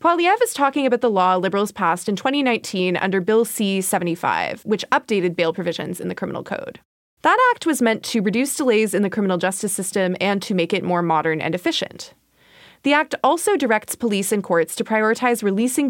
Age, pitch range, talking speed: 20-39, 180-240 Hz, 195 wpm